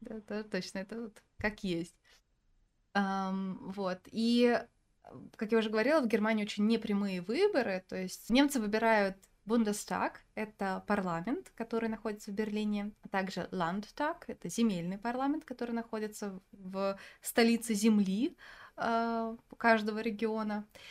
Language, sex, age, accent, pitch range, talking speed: Russian, female, 20-39, native, 195-230 Hz, 125 wpm